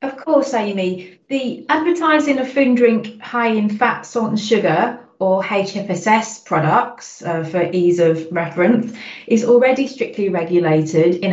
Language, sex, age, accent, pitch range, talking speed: English, female, 30-49, British, 165-215 Hz, 145 wpm